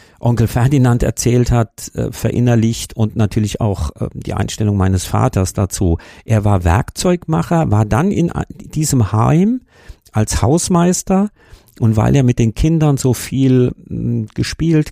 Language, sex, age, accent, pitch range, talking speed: German, male, 50-69, German, 100-130 Hz, 130 wpm